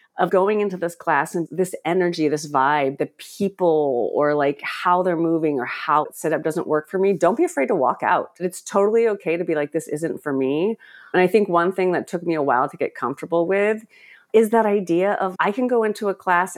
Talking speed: 240 wpm